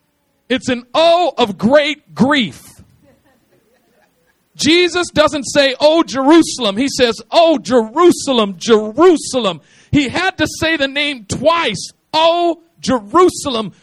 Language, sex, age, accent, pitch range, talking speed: English, male, 50-69, American, 205-295 Hz, 110 wpm